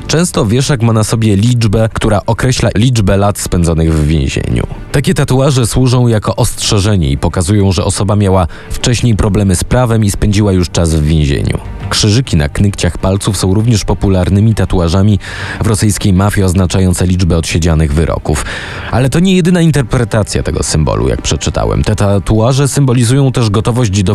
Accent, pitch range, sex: native, 90-120 Hz, male